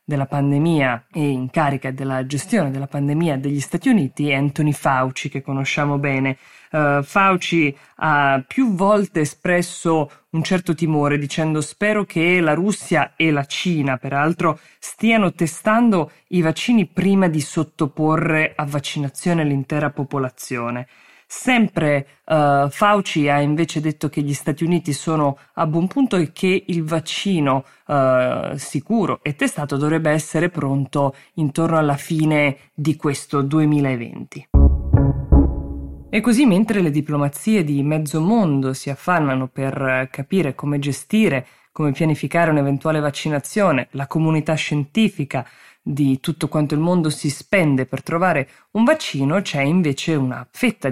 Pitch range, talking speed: 140-165 Hz, 130 wpm